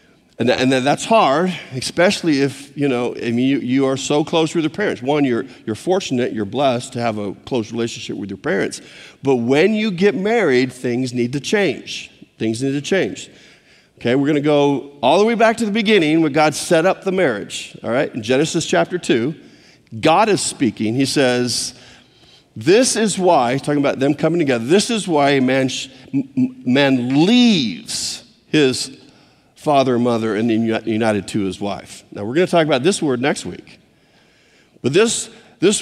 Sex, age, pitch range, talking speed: male, 50-69, 130-195 Hz, 185 wpm